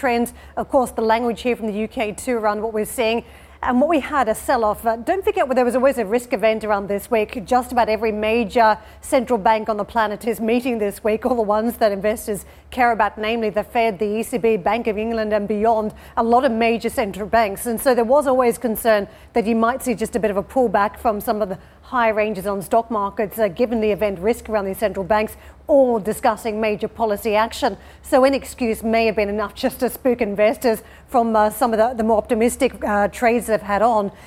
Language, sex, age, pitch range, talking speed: English, female, 40-59, 215-245 Hz, 230 wpm